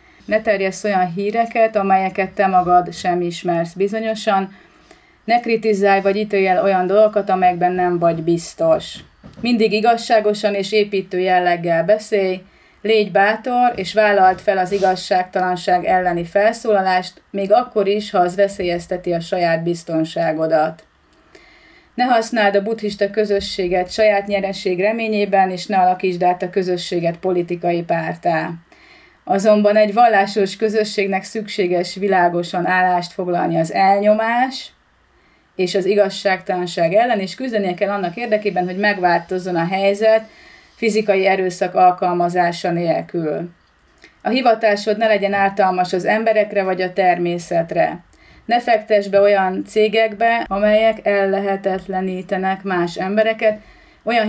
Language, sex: Hungarian, female